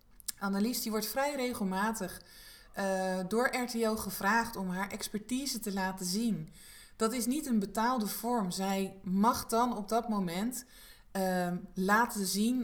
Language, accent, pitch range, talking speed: Dutch, Dutch, 185-240 Hz, 140 wpm